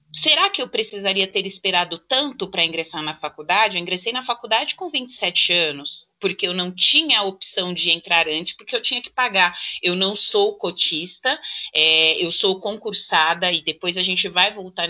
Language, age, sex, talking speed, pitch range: Portuguese, 30-49, female, 180 wpm, 175-240 Hz